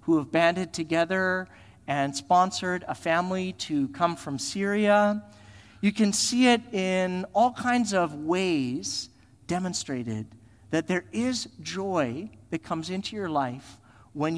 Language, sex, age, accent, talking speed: English, male, 40-59, American, 135 wpm